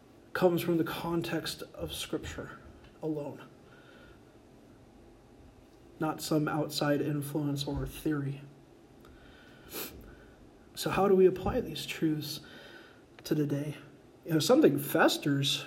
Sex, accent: male, American